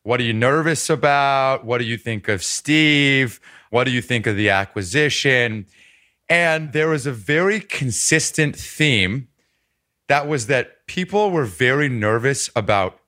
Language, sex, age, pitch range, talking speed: English, male, 30-49, 115-155 Hz, 150 wpm